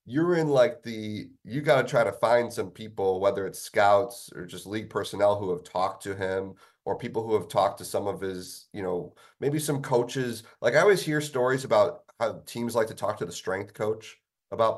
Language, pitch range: English, 105-145 Hz